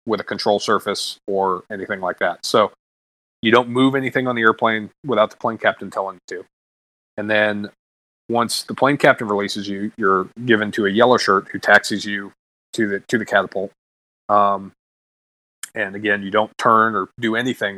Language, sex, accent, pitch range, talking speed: English, male, American, 100-115 Hz, 180 wpm